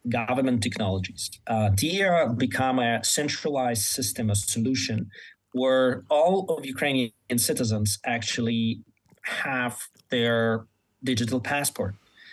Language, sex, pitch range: Danish, male, 110-130 Hz